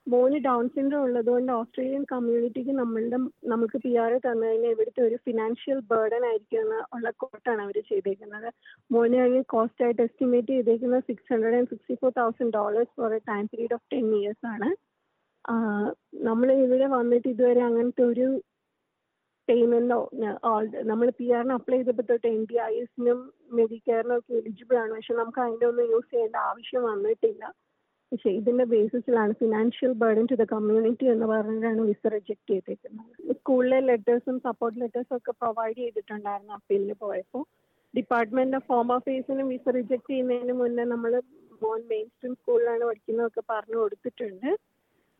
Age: 20-39